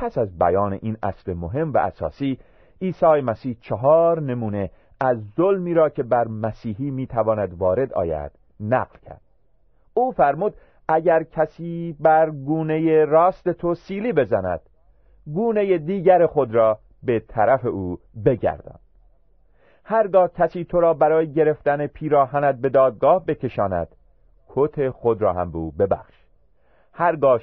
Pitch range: 95-155 Hz